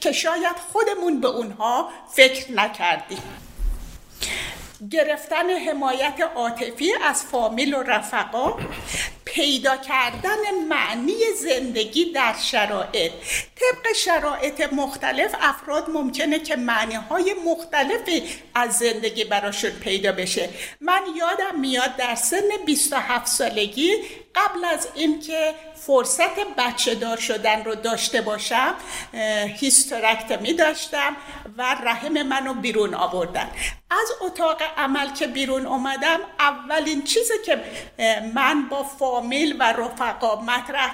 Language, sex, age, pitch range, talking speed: Persian, female, 50-69, 235-325 Hz, 110 wpm